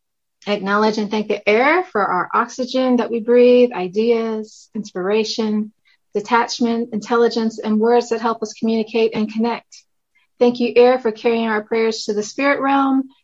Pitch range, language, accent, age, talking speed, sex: 205-245 Hz, English, American, 30-49, 155 wpm, female